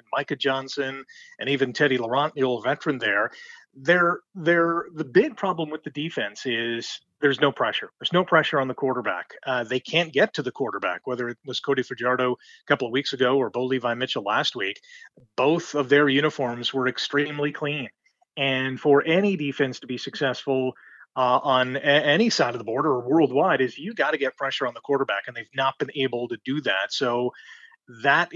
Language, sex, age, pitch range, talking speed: English, male, 30-49, 130-170 Hz, 200 wpm